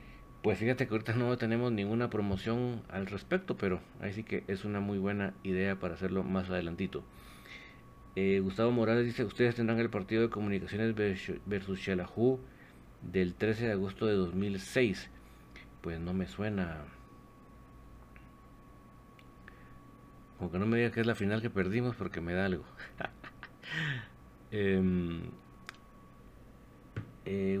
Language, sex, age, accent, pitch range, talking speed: Spanish, male, 50-69, Mexican, 95-115 Hz, 135 wpm